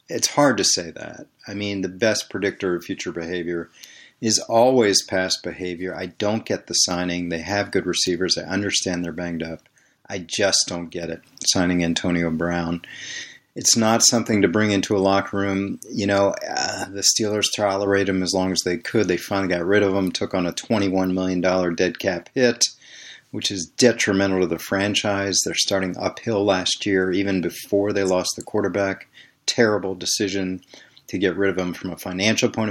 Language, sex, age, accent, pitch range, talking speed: English, male, 40-59, American, 90-105 Hz, 185 wpm